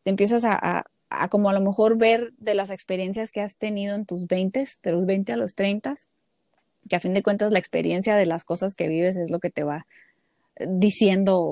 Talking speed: 225 wpm